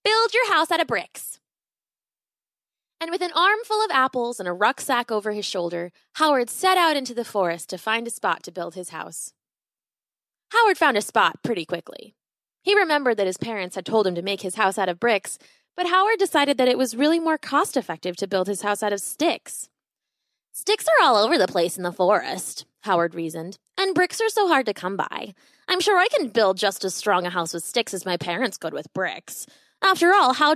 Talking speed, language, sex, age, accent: 215 wpm, English, female, 20-39, American